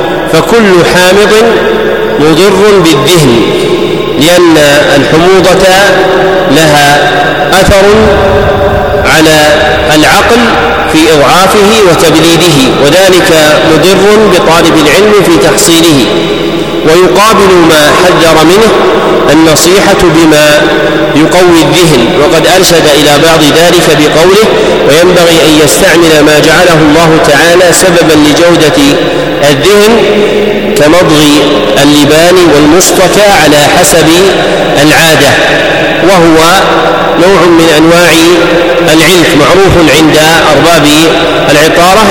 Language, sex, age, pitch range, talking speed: Arabic, male, 40-59, 155-185 Hz, 85 wpm